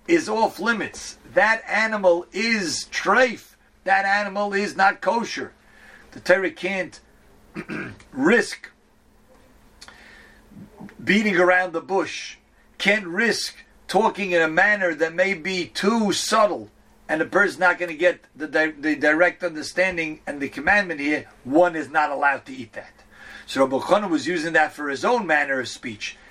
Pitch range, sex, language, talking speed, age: 160-205 Hz, male, English, 150 wpm, 50-69